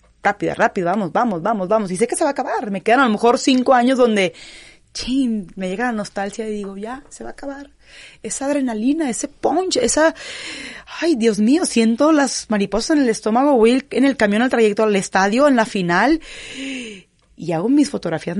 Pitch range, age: 195-270 Hz, 30-49